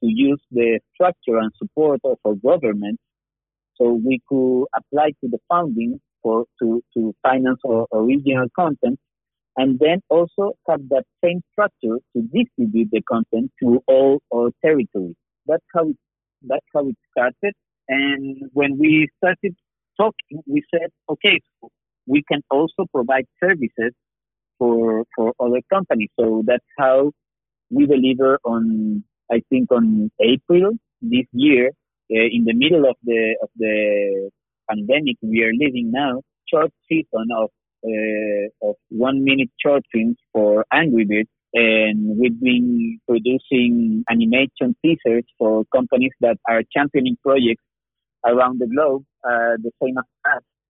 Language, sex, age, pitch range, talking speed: English, male, 50-69, 115-160 Hz, 140 wpm